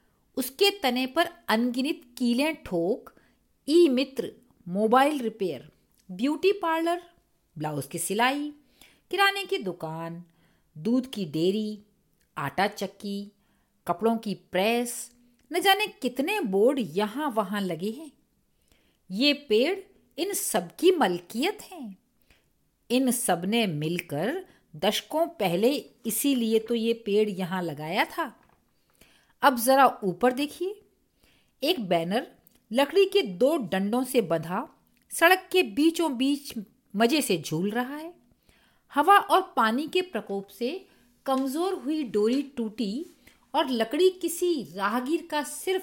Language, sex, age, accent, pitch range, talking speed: Hindi, female, 50-69, native, 200-315 Hz, 120 wpm